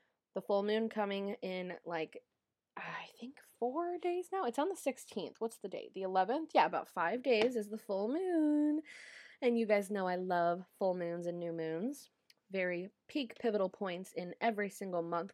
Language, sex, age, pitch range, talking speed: English, female, 20-39, 175-230 Hz, 185 wpm